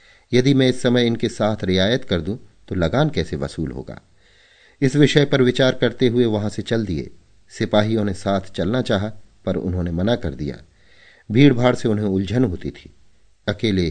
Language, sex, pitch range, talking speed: Hindi, male, 90-110 Hz, 85 wpm